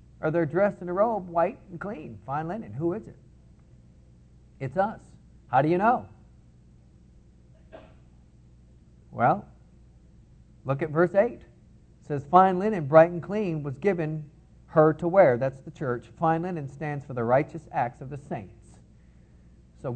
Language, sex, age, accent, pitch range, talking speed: English, male, 40-59, American, 105-165 Hz, 145 wpm